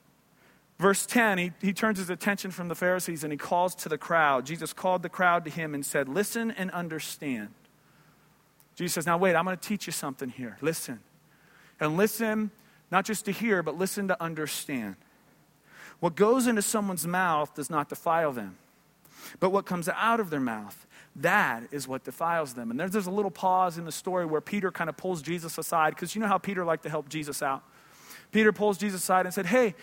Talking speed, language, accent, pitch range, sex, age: 205 wpm, English, American, 170-215 Hz, male, 40-59